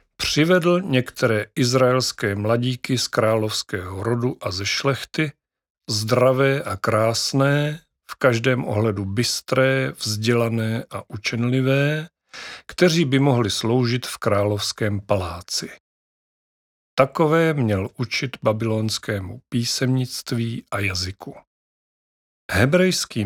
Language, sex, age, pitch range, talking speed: Czech, male, 40-59, 105-130 Hz, 90 wpm